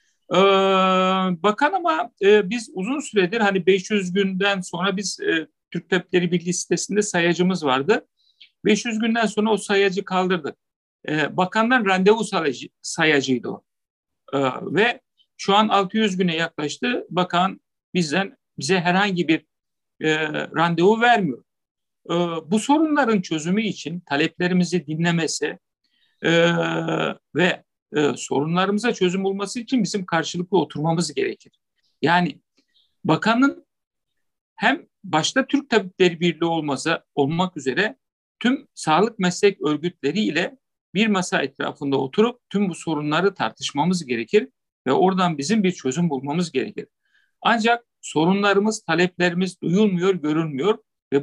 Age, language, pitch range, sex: 50-69, Turkish, 165-215 Hz, male